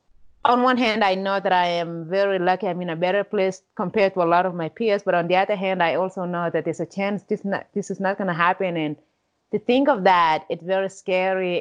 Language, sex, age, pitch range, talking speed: English, female, 30-49, 175-220 Hz, 260 wpm